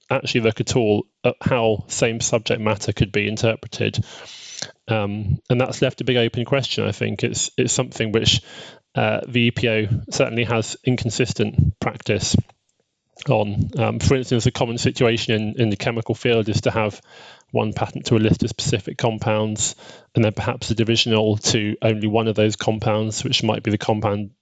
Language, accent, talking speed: English, British, 175 wpm